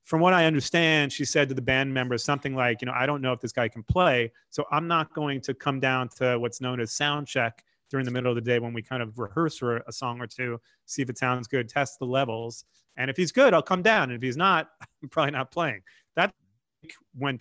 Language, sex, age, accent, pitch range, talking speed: English, male, 30-49, American, 125-145 Hz, 260 wpm